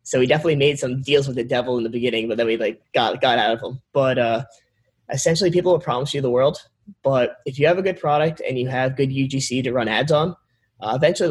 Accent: American